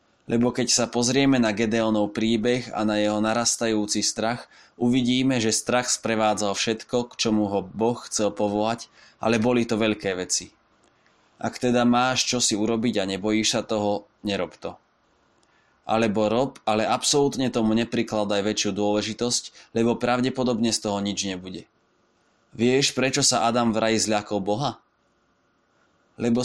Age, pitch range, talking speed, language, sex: 20-39, 105-120 Hz, 140 wpm, Slovak, male